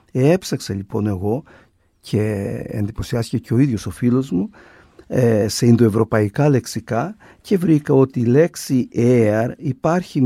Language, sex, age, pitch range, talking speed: Greek, male, 50-69, 110-150 Hz, 125 wpm